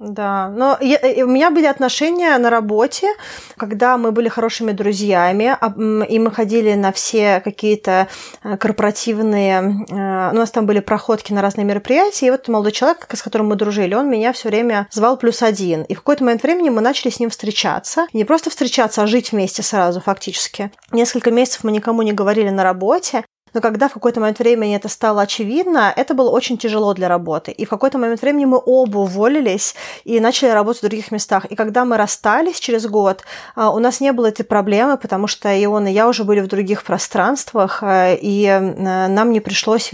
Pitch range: 200-240 Hz